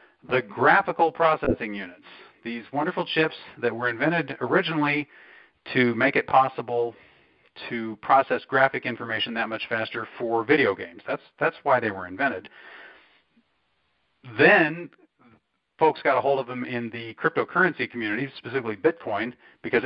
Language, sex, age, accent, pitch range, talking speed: English, male, 40-59, American, 105-135 Hz, 135 wpm